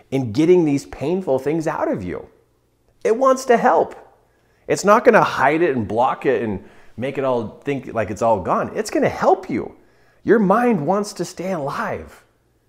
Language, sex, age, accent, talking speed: English, male, 30-49, American, 195 wpm